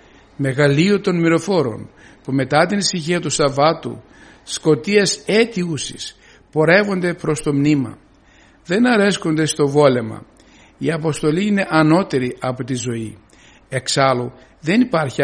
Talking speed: 115 wpm